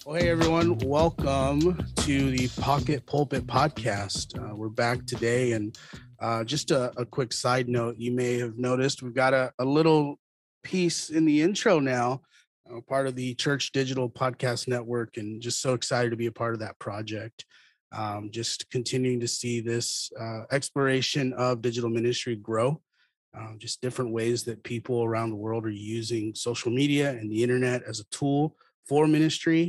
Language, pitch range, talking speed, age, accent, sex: English, 115-135 Hz, 175 wpm, 30-49, American, male